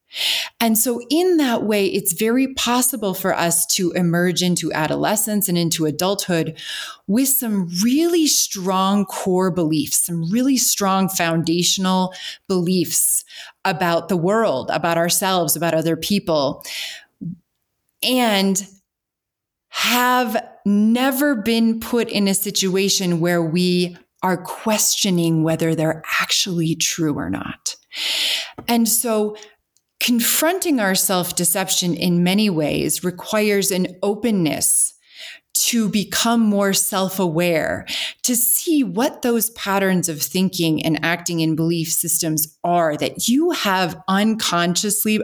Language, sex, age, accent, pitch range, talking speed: English, female, 30-49, American, 170-230 Hz, 115 wpm